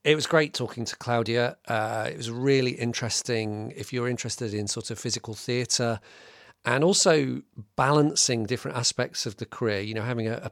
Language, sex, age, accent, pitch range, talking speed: English, male, 40-59, British, 110-125 Hz, 185 wpm